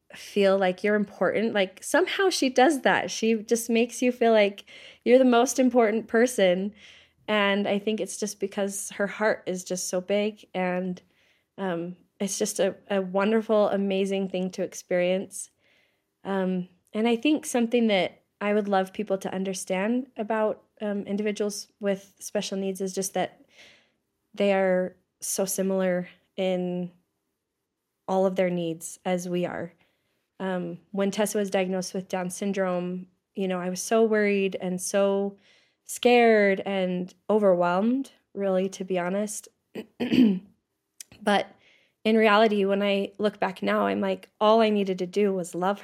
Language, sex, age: English, female, 20-39